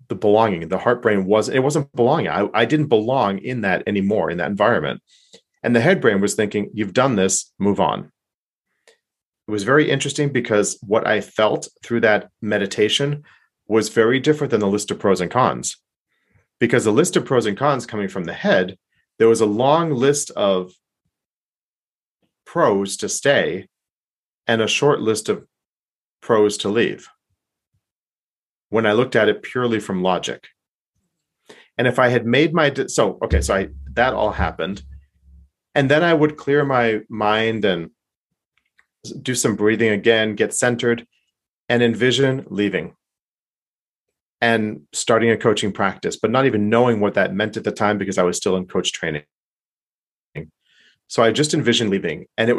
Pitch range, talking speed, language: 105-135 Hz, 165 wpm, English